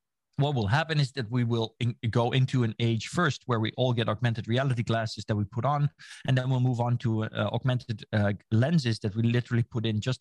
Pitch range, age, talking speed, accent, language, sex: 105-130 Hz, 20-39, 235 wpm, Dutch, English, male